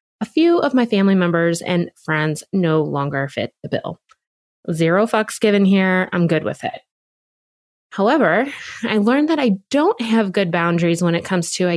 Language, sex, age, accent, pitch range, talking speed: English, female, 20-39, American, 160-205 Hz, 180 wpm